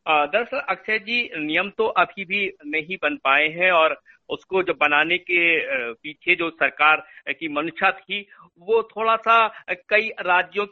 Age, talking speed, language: 50-69, 150 wpm, Hindi